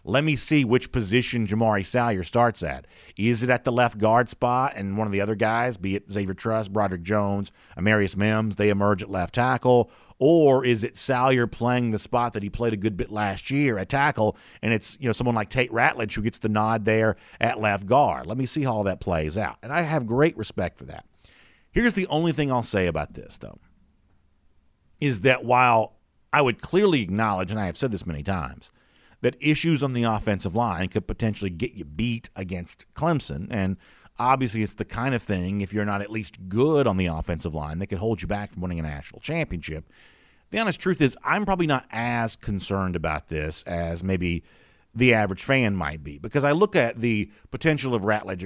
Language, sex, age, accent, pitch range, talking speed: English, male, 50-69, American, 95-125 Hz, 215 wpm